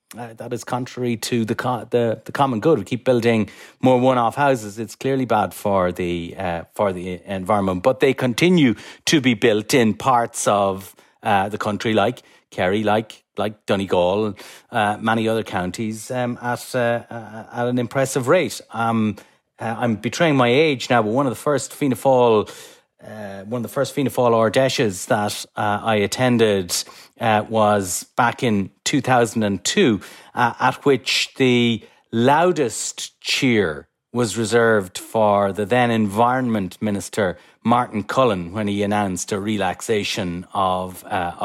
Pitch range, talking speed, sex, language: 100-120 Hz, 155 wpm, male, English